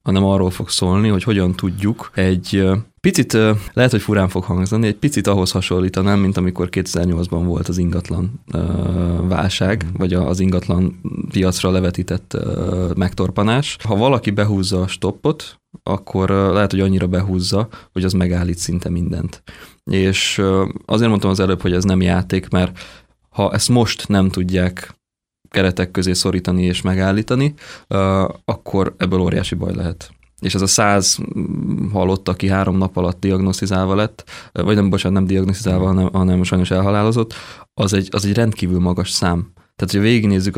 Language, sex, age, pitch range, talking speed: Hungarian, male, 20-39, 90-100 Hz, 150 wpm